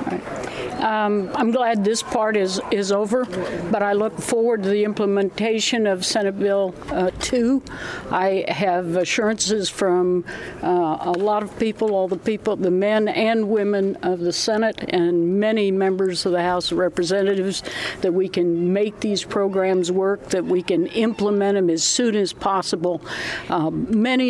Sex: female